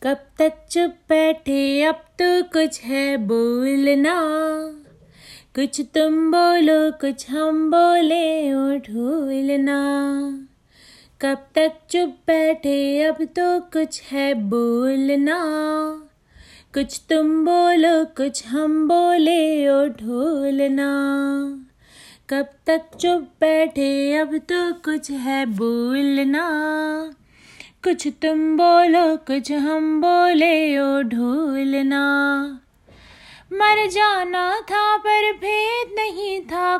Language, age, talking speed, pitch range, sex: Hindi, 30-49, 95 wpm, 280-335 Hz, female